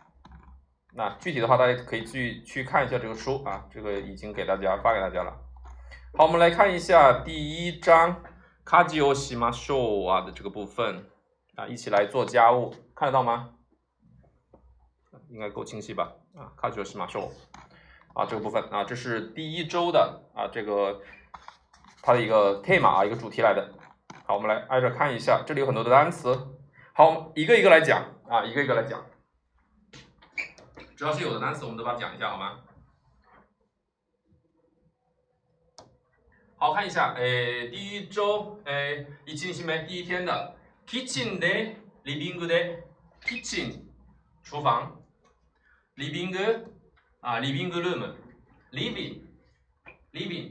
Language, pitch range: Chinese, 110-175 Hz